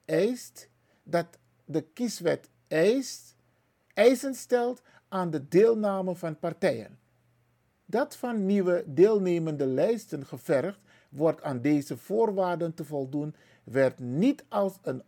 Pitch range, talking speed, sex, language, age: 140-190 Hz, 110 wpm, male, Dutch, 50-69